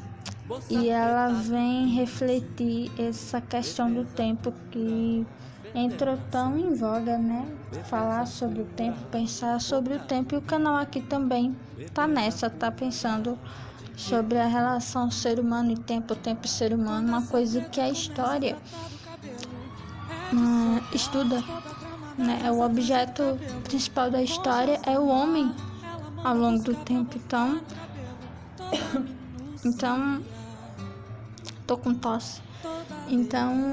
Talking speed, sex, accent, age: 120 wpm, female, Brazilian, 10-29